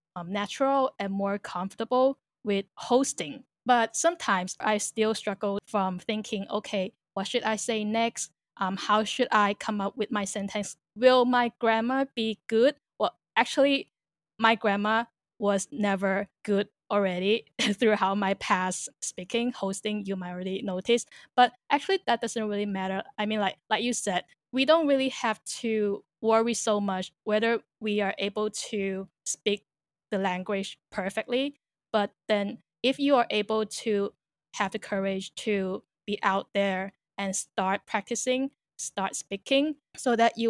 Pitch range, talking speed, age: 195-235 Hz, 155 wpm, 10-29